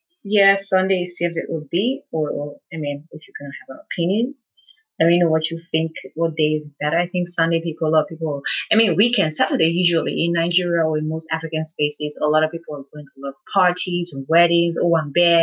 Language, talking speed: English, 235 wpm